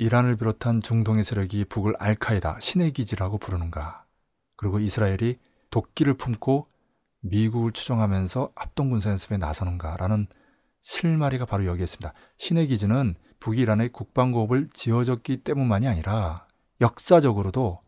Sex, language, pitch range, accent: male, Korean, 95-130 Hz, native